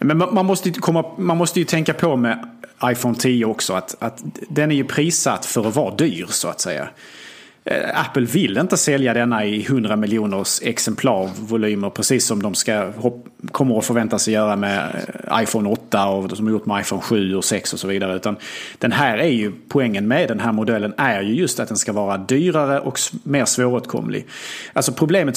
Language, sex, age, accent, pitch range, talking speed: Swedish, male, 30-49, Norwegian, 110-150 Hz, 195 wpm